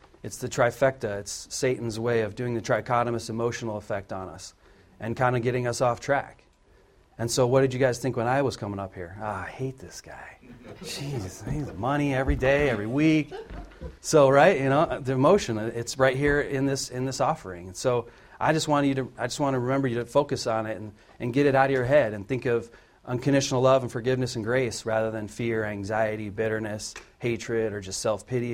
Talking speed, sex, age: 215 wpm, male, 40-59